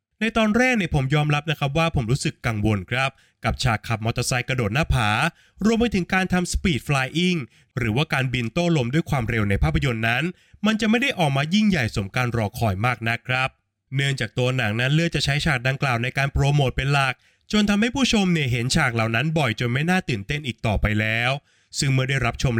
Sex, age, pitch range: male, 20-39, 120-165 Hz